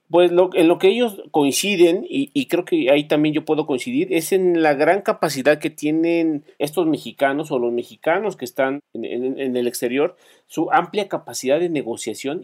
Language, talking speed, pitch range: Spanish, 195 wpm, 140-220 Hz